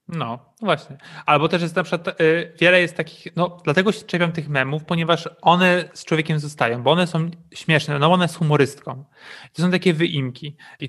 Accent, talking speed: native, 200 wpm